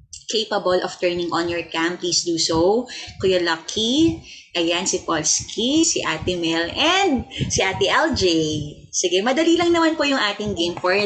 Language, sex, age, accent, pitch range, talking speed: English, female, 20-39, Filipino, 175-240 Hz, 165 wpm